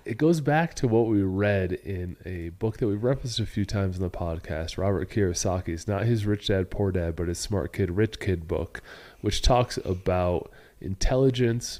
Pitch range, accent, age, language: 95-120 Hz, American, 30-49, English